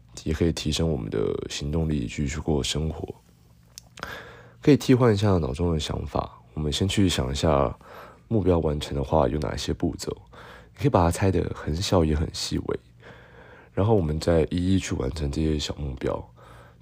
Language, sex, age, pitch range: Chinese, male, 20-39, 70-95 Hz